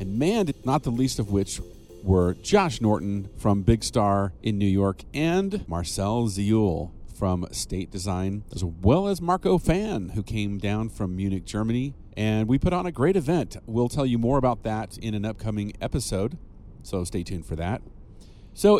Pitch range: 95-120 Hz